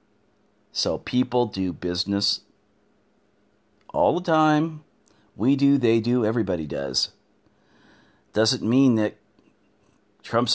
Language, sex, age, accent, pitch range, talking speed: English, male, 40-59, American, 105-155 Hz, 95 wpm